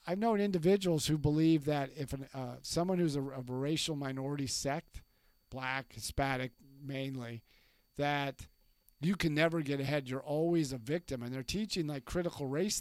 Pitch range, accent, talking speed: 130-160 Hz, American, 170 wpm